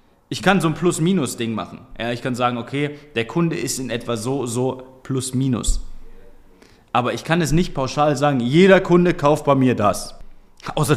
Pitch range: 125-160 Hz